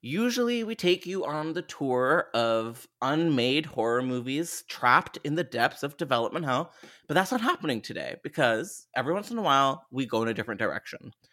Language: English